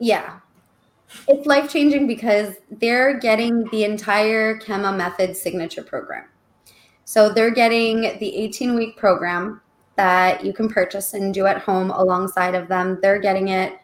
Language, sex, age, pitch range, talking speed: English, female, 20-39, 185-215 Hz, 140 wpm